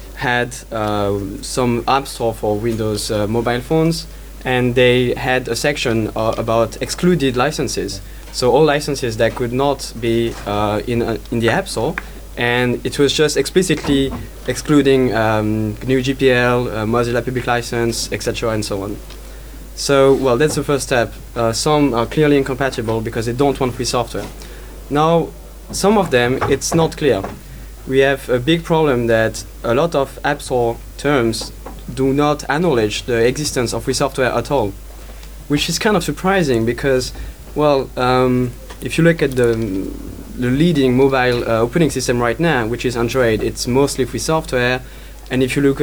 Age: 20-39